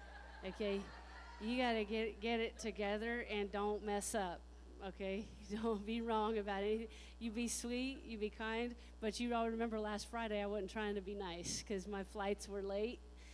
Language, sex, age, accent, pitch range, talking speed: English, female, 40-59, American, 190-230 Hz, 180 wpm